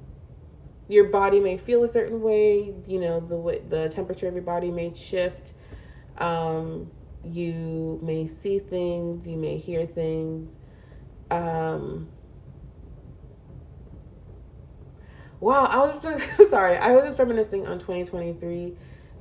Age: 30-49